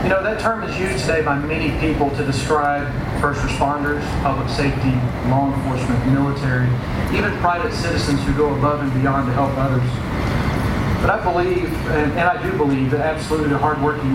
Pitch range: 125-145 Hz